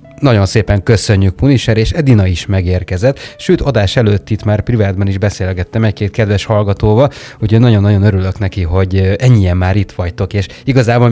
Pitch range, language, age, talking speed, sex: 100-115 Hz, Hungarian, 30-49, 160 wpm, male